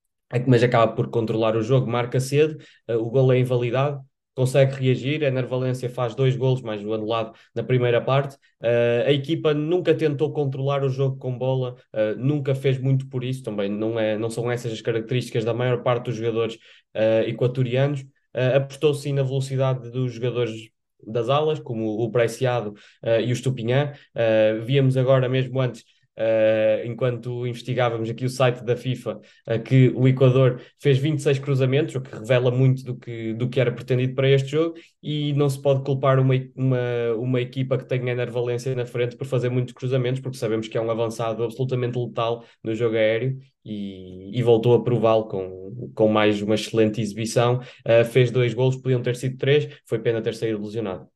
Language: Portuguese